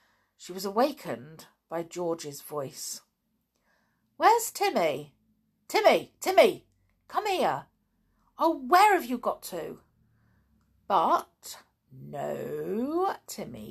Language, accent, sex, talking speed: English, British, female, 90 wpm